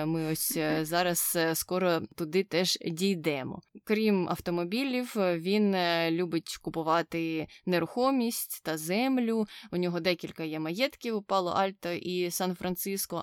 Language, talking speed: Ukrainian, 110 wpm